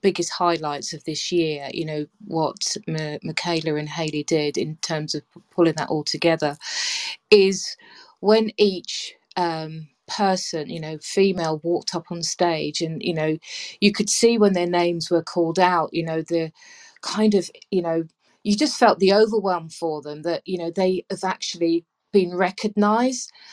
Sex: female